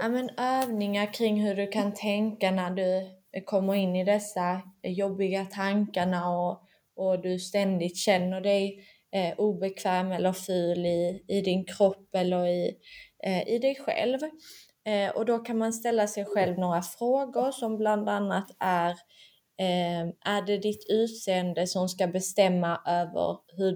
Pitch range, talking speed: 180-210 Hz, 150 wpm